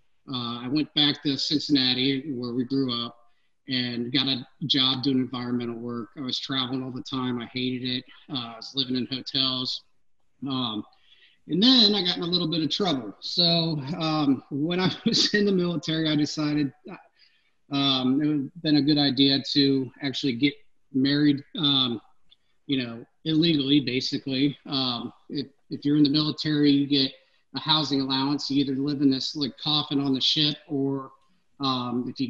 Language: English